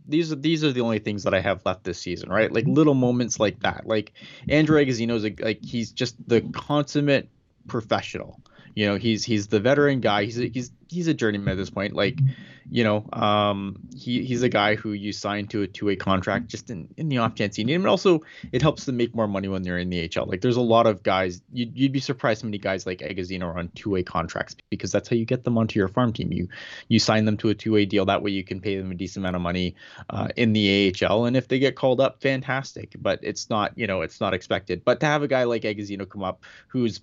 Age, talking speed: 20-39, 255 wpm